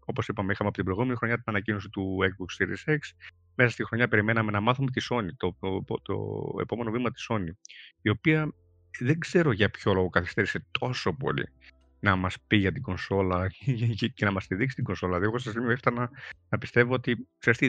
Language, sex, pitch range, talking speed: Greek, male, 90-130 Hz, 200 wpm